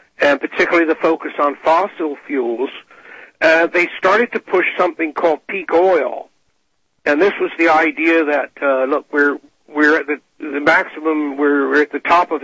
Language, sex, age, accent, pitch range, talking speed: English, male, 60-79, American, 140-165 Hz, 175 wpm